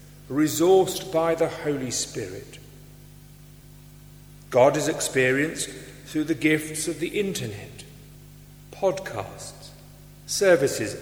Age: 50-69